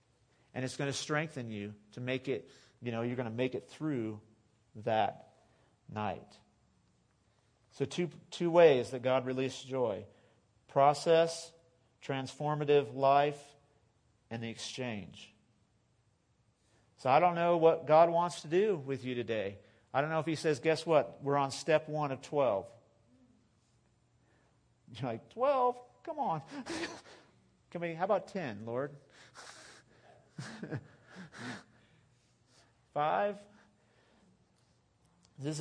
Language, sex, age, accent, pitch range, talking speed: English, male, 40-59, American, 120-160 Hz, 120 wpm